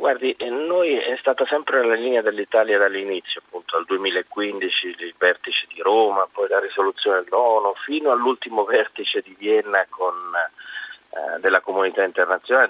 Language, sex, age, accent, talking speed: Italian, male, 40-59, native, 140 wpm